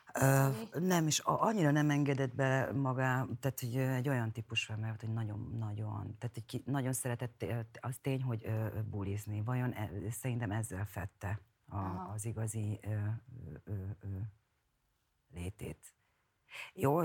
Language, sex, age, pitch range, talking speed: Hungarian, female, 40-59, 105-125 Hz, 125 wpm